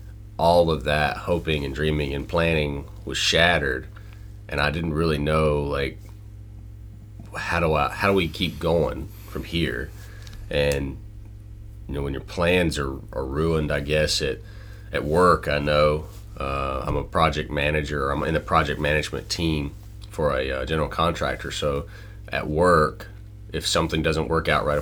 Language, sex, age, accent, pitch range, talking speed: English, male, 30-49, American, 75-105 Hz, 160 wpm